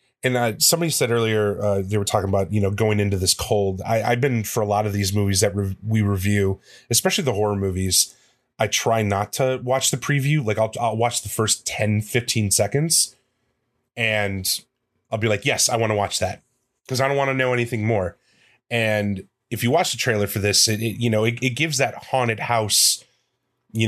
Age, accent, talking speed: 30-49, American, 205 wpm